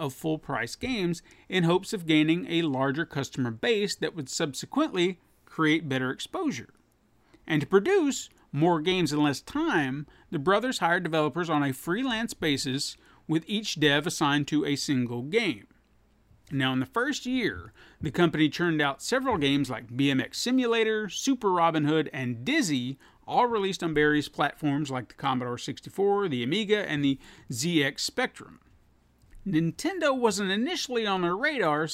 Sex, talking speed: male, 155 wpm